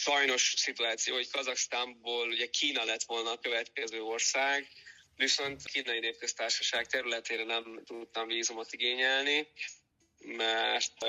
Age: 20-39